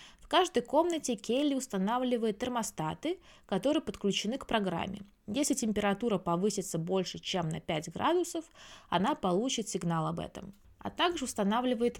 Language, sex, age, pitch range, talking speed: Russian, female, 20-39, 185-255 Hz, 130 wpm